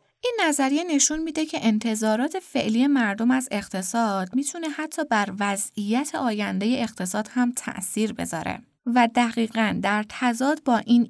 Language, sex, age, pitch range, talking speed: Persian, female, 20-39, 200-265 Hz, 135 wpm